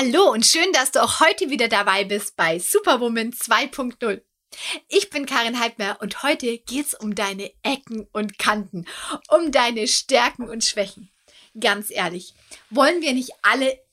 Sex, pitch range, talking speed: female, 220-310 Hz, 160 wpm